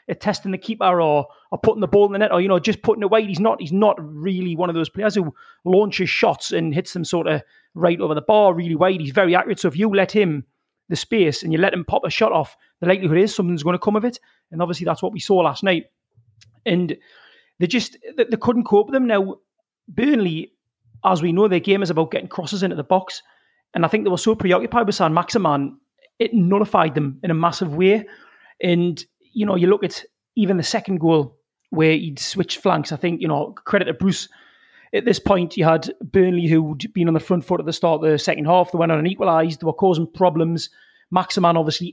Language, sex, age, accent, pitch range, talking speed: English, male, 30-49, British, 165-200 Hz, 240 wpm